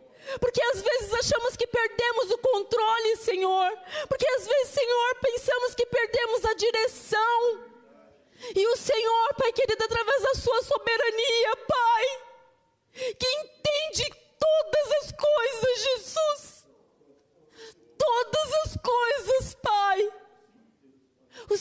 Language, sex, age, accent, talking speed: Portuguese, female, 30-49, Brazilian, 110 wpm